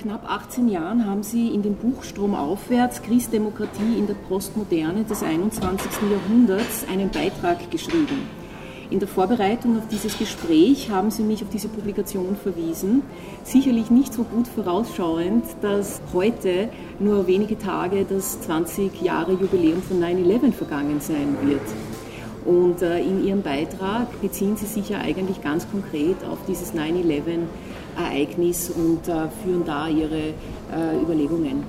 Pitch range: 180-225 Hz